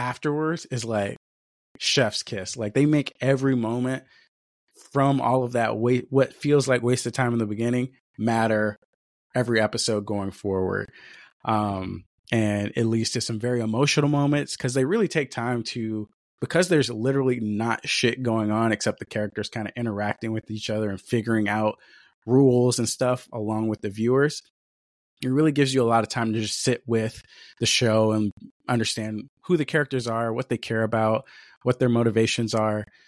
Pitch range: 110-130 Hz